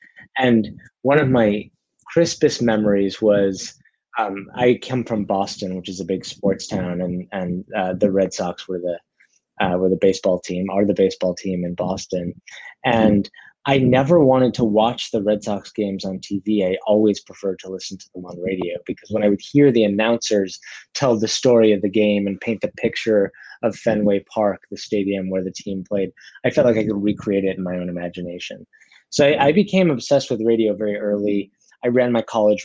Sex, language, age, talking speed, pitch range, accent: male, English, 20-39, 200 wpm, 95-110 Hz, American